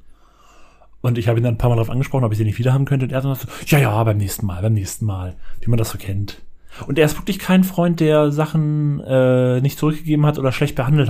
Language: German